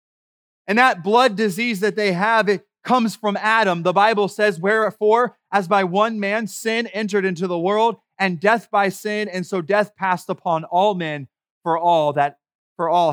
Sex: male